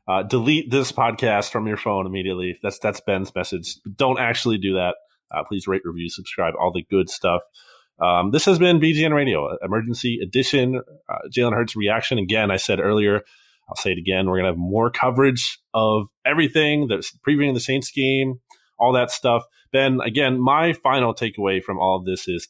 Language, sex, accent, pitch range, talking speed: English, male, American, 95-135 Hz, 185 wpm